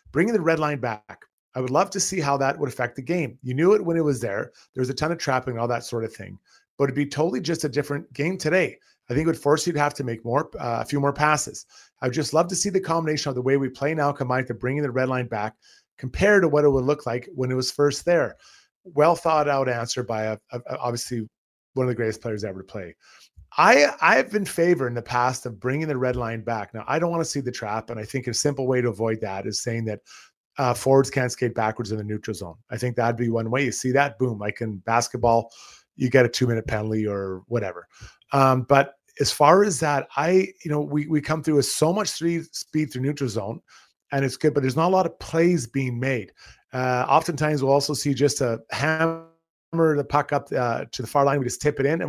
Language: English